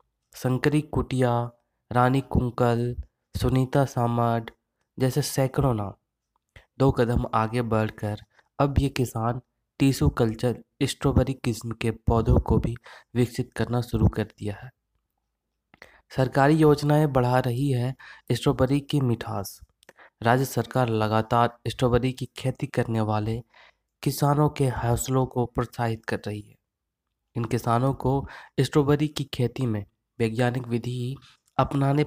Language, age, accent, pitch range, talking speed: Hindi, 20-39, native, 110-130 Hz, 120 wpm